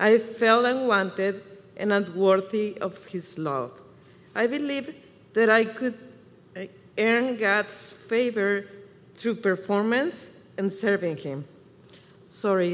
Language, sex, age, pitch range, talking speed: English, female, 50-69, 195-230 Hz, 105 wpm